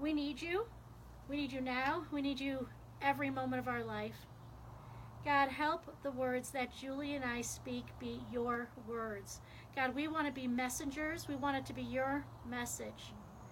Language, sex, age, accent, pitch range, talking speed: English, female, 40-59, American, 230-280 Hz, 180 wpm